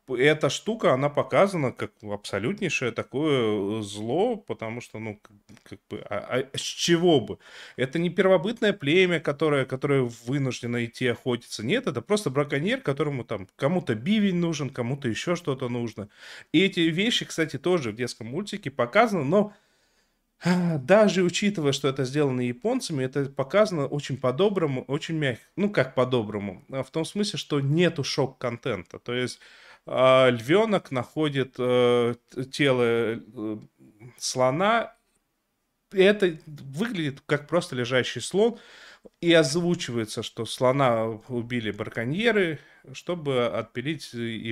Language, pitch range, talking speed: Russian, 120-180 Hz, 125 wpm